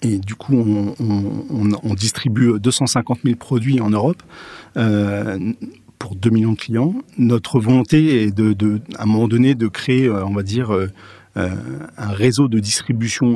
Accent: French